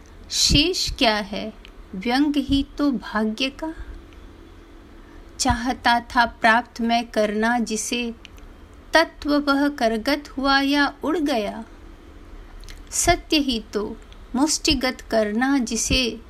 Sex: female